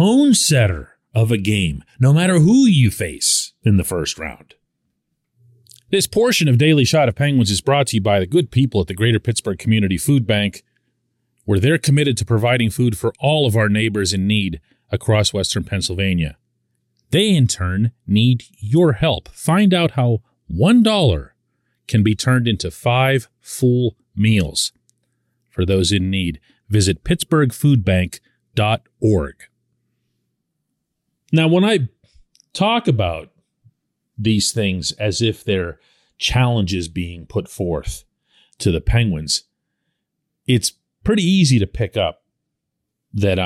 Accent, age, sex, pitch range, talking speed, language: American, 40-59, male, 95-140 Hz, 135 wpm, English